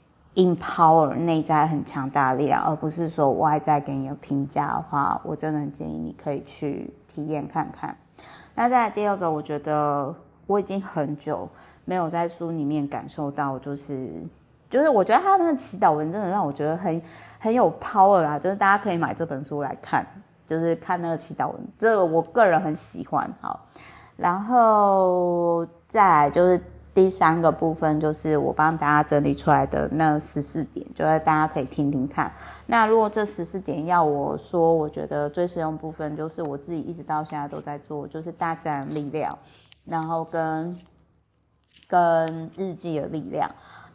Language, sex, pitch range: Chinese, female, 150-180 Hz